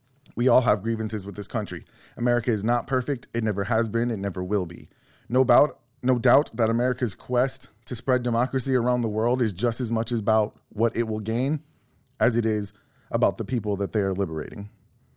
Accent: American